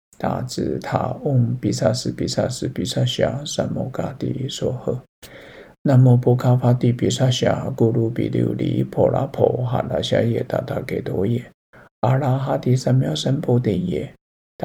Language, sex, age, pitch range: Chinese, male, 50-69, 105-125 Hz